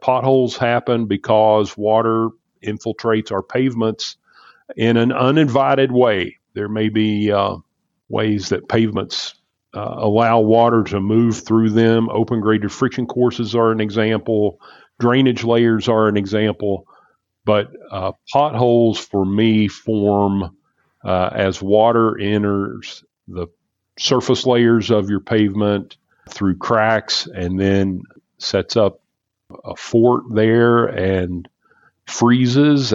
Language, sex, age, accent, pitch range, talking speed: English, male, 40-59, American, 100-120 Hz, 115 wpm